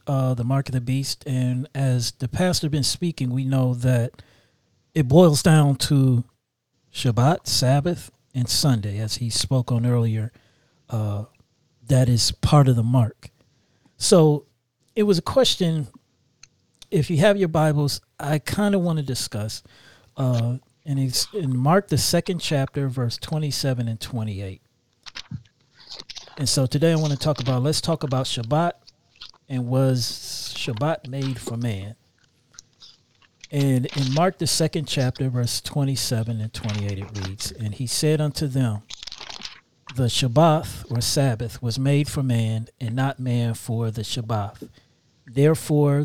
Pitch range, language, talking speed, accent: 120-145 Hz, English, 145 wpm, American